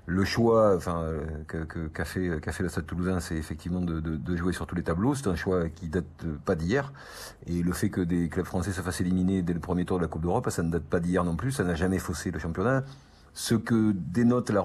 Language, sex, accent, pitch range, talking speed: French, male, French, 85-105 Hz, 265 wpm